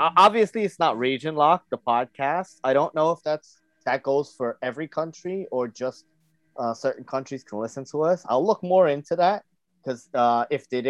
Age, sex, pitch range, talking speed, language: 20-39, male, 115-160 Hz, 195 wpm, English